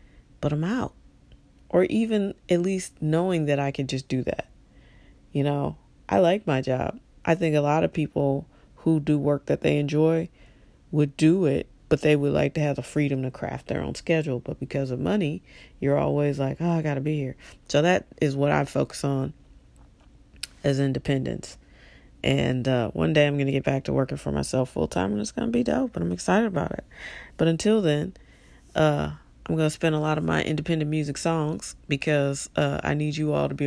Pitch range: 135-160 Hz